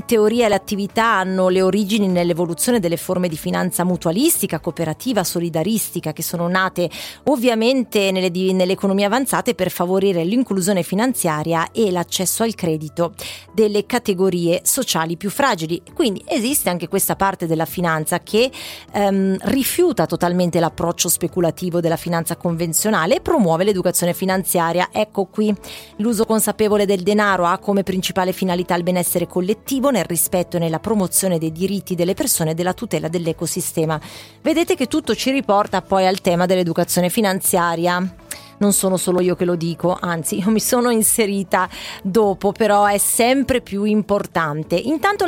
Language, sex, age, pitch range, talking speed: Italian, female, 30-49, 175-220 Hz, 145 wpm